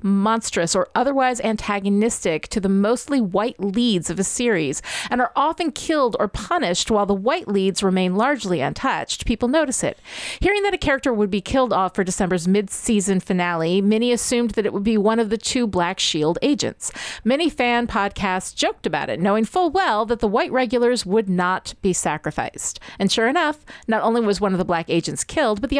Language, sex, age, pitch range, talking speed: English, female, 30-49, 190-245 Hz, 195 wpm